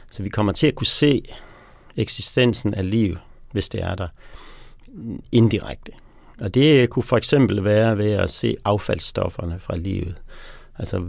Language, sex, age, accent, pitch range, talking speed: Danish, male, 60-79, native, 95-115 Hz, 150 wpm